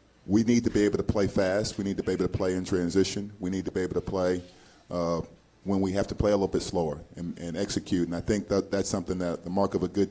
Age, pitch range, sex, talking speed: 40-59, 85-100 Hz, male, 290 wpm